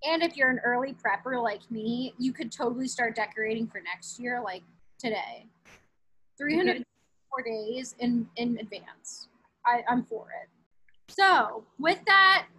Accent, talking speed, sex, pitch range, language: American, 140 wpm, female, 245-345 Hz, English